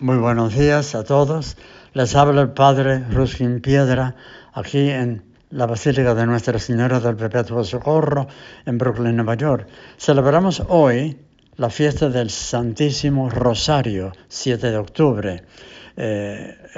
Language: English